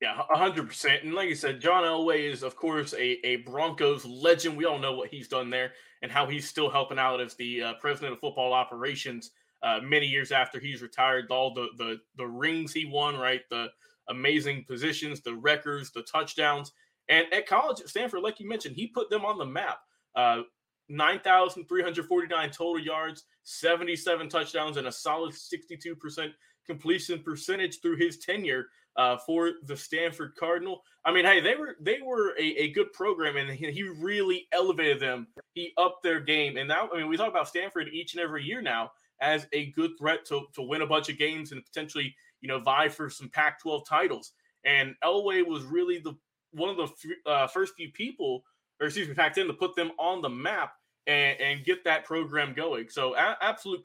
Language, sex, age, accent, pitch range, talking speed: English, male, 20-39, American, 140-175 Hz, 205 wpm